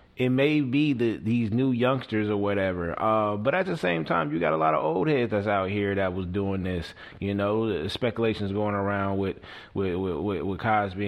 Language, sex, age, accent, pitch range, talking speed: English, male, 20-39, American, 100-130 Hz, 220 wpm